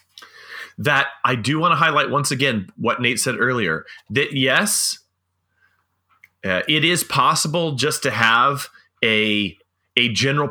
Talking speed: 135 wpm